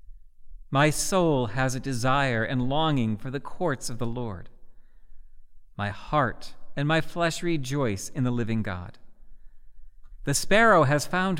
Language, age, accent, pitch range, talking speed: English, 40-59, American, 120-160 Hz, 140 wpm